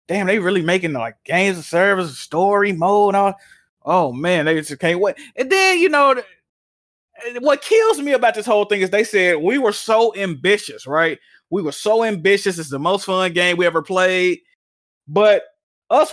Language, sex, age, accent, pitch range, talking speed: English, male, 20-39, American, 180-240 Hz, 195 wpm